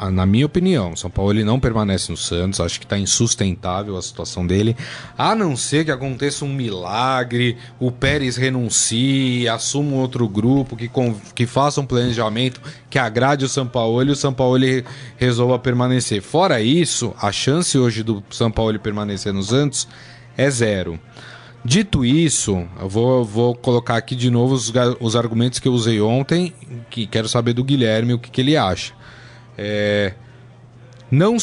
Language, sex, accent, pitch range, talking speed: Portuguese, male, Brazilian, 115-140 Hz, 170 wpm